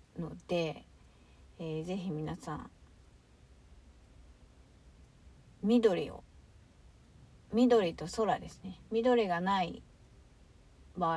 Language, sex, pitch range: Japanese, female, 165-240 Hz